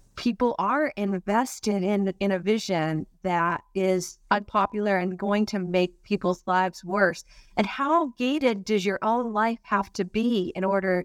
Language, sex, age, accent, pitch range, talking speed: English, female, 40-59, American, 180-230 Hz, 155 wpm